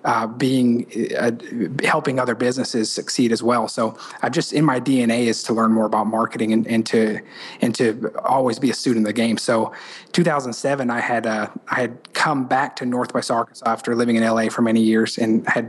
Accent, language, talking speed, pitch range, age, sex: American, English, 210 wpm, 115-135 Hz, 30-49, male